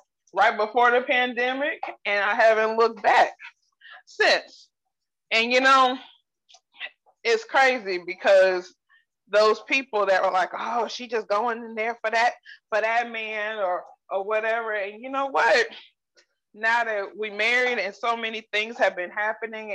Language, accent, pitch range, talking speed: English, American, 195-255 Hz, 150 wpm